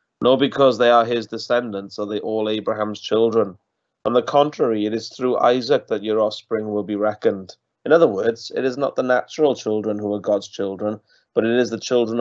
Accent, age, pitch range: British, 30-49, 105-125 Hz